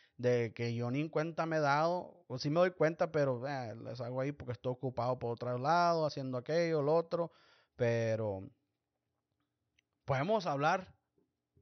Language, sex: English, male